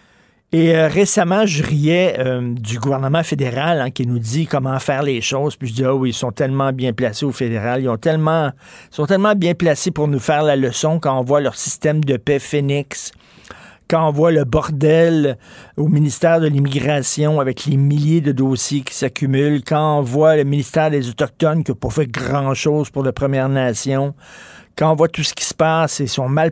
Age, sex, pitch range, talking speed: 50-69, male, 130-155 Hz, 215 wpm